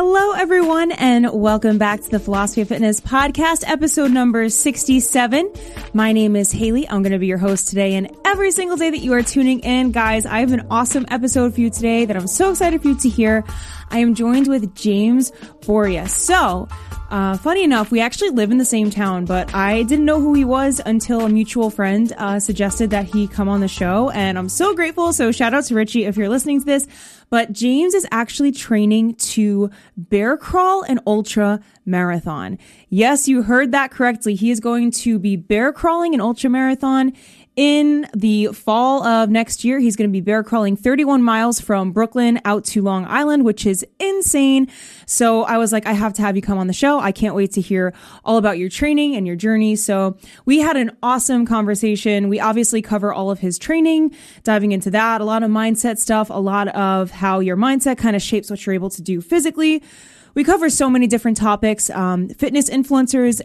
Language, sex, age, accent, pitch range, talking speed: English, female, 20-39, American, 205-265 Hz, 210 wpm